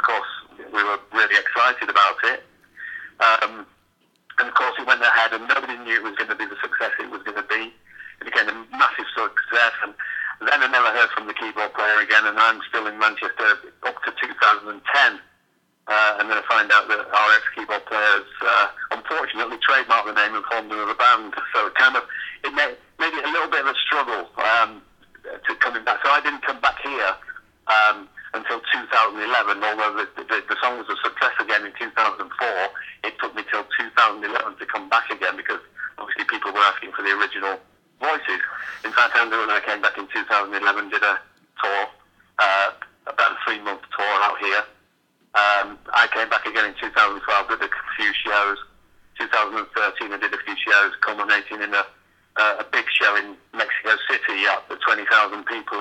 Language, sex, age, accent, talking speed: English, male, 50-69, British, 190 wpm